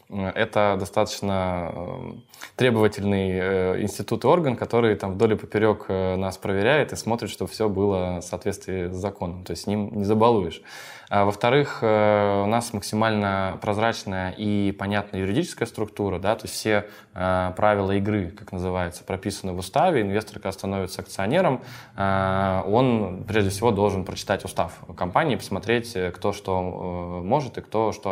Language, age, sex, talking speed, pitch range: Russian, 20-39, male, 135 wpm, 90-105 Hz